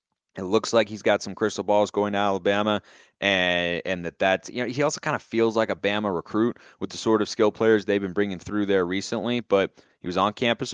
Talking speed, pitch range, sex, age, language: 240 wpm, 90-110 Hz, male, 30-49, English